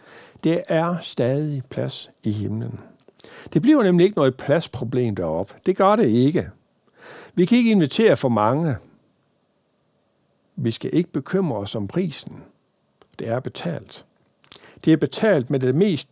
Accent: native